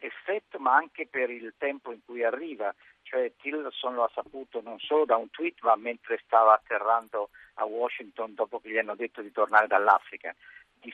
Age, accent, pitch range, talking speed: 50-69, native, 110-165 Hz, 185 wpm